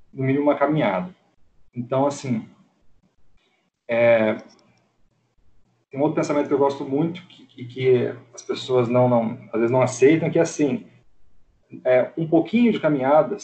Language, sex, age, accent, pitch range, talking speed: Portuguese, male, 40-59, Brazilian, 125-155 Hz, 155 wpm